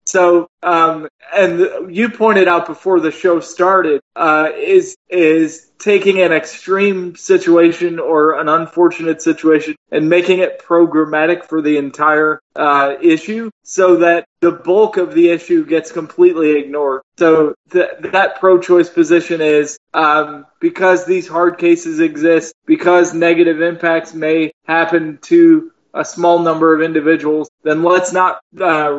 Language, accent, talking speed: English, American, 135 wpm